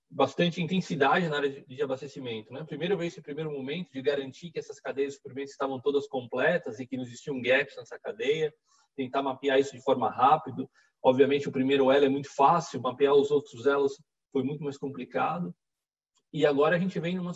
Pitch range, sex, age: 130-150 Hz, male, 20-39